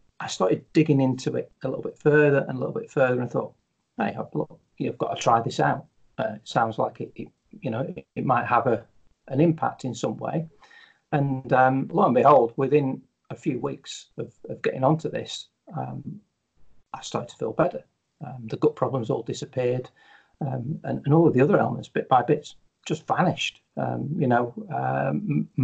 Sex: male